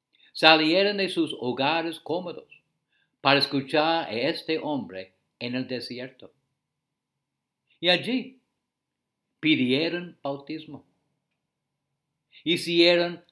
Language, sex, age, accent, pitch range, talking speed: English, male, 60-79, Indian, 125-165 Hz, 80 wpm